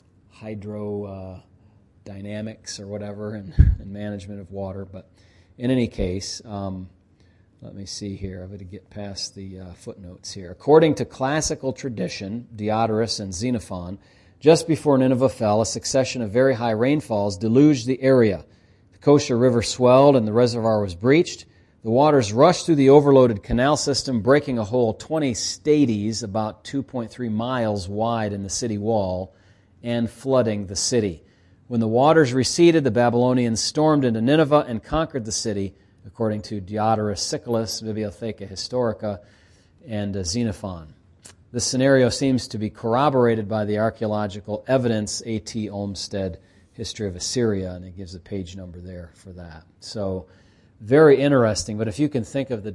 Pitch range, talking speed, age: 100-120 Hz, 155 wpm, 40-59